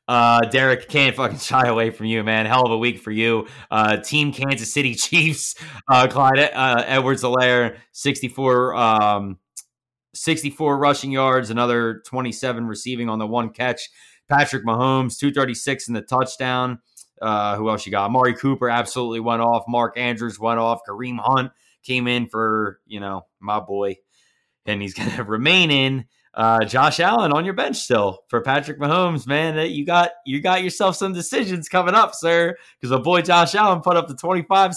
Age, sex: 20-39, male